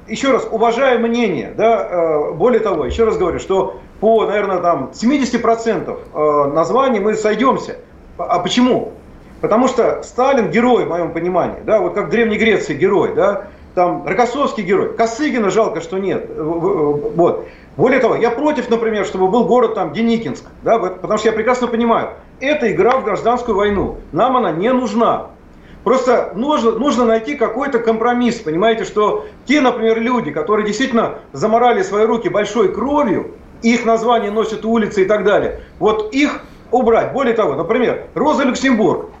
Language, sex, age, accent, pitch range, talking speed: Russian, male, 40-59, native, 215-250 Hz, 155 wpm